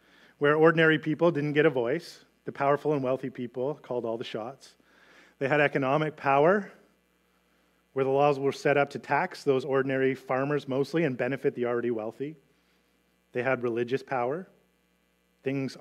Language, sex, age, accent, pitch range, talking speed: English, male, 30-49, American, 115-140 Hz, 160 wpm